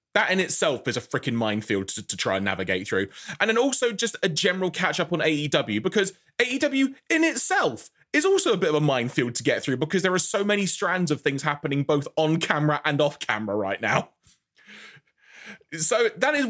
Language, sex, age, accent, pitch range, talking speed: English, male, 20-39, British, 145-220 Hz, 205 wpm